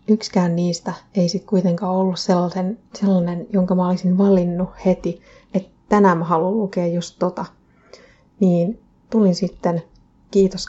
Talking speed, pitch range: 135 wpm, 180-195 Hz